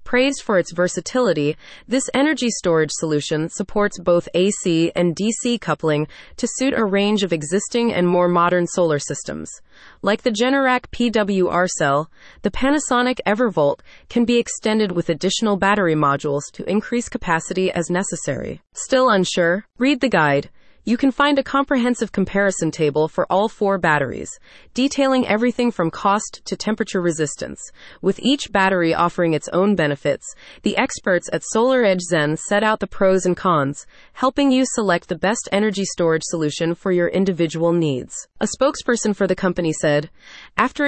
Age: 30-49